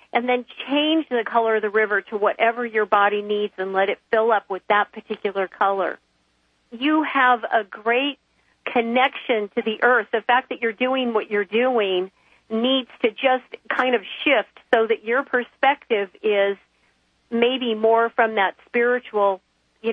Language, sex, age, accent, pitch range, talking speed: English, female, 50-69, American, 195-240 Hz, 165 wpm